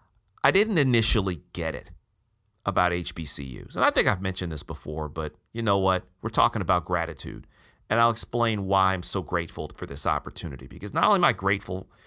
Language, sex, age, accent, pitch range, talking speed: English, male, 40-59, American, 90-105 Hz, 190 wpm